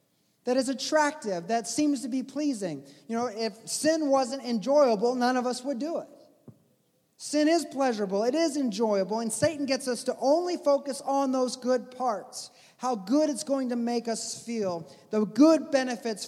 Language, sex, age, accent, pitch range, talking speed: English, male, 30-49, American, 190-250 Hz, 175 wpm